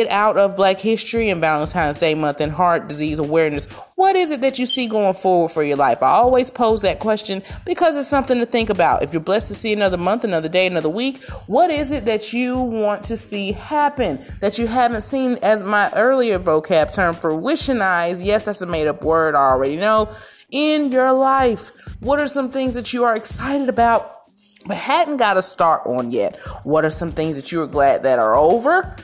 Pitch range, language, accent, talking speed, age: 160-245 Hz, English, American, 215 wpm, 30-49